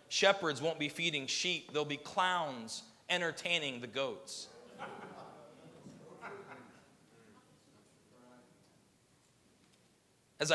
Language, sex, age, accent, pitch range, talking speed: English, male, 30-49, American, 160-210 Hz, 75 wpm